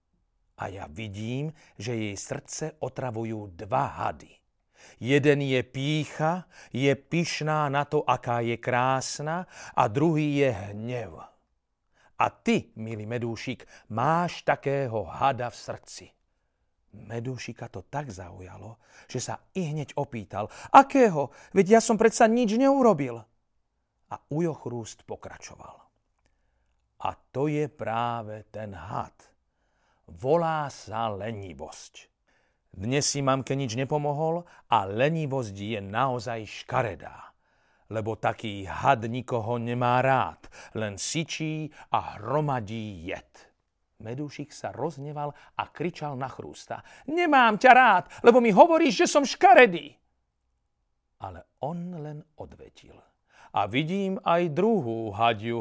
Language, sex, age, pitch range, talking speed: Slovak, male, 40-59, 110-155 Hz, 115 wpm